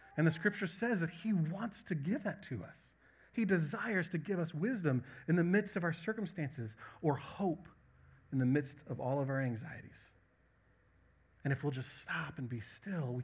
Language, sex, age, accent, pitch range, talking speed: English, male, 30-49, American, 125-180 Hz, 195 wpm